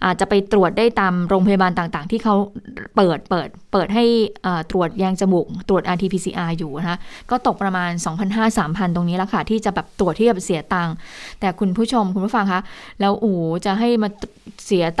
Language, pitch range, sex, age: Thai, 185-225 Hz, female, 20-39